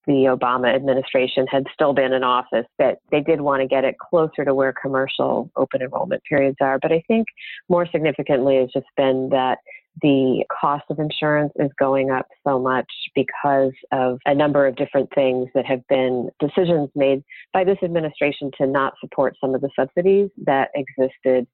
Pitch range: 125-140 Hz